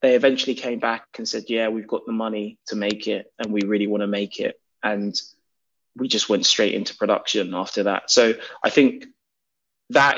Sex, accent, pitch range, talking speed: male, British, 105-125 Hz, 200 wpm